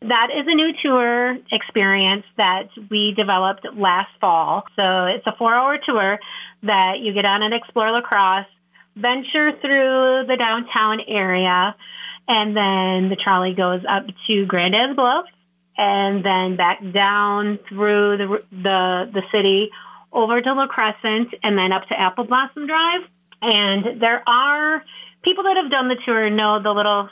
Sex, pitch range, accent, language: female, 190-235 Hz, American, English